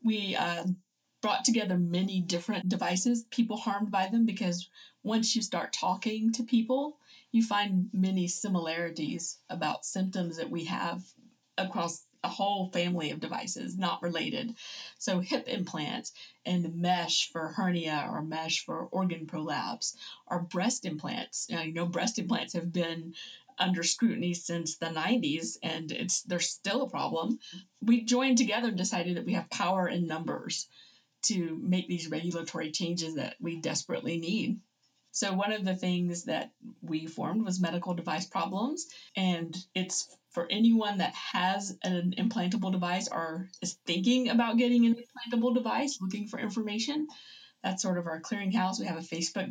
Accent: American